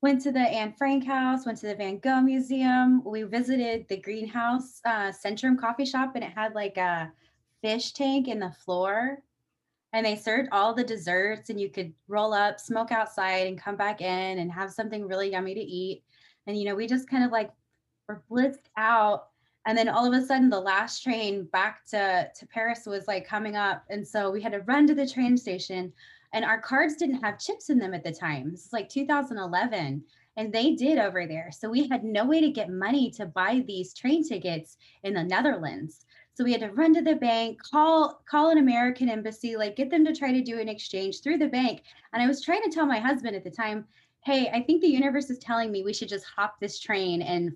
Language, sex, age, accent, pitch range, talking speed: English, female, 20-39, American, 195-260 Hz, 225 wpm